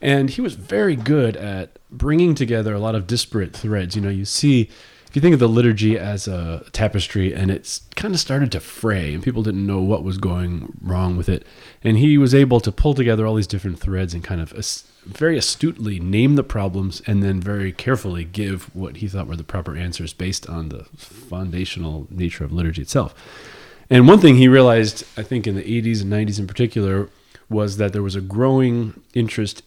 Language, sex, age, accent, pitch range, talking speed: English, male, 30-49, American, 90-115 Hz, 210 wpm